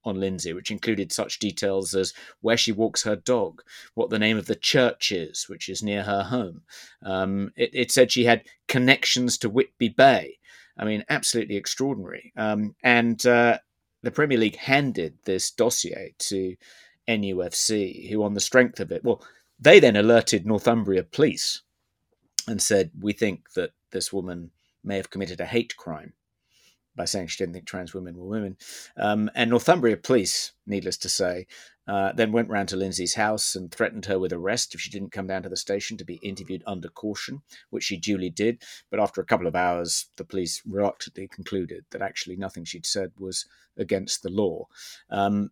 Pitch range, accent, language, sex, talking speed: 95-115 Hz, British, English, male, 185 wpm